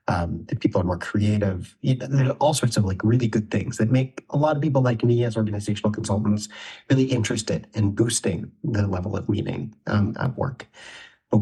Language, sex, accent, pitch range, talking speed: English, male, American, 100-115 Hz, 195 wpm